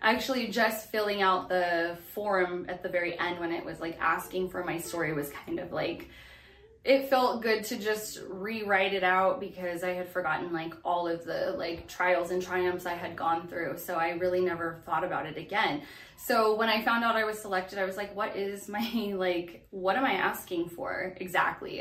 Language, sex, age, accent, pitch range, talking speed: English, female, 20-39, American, 175-205 Hz, 205 wpm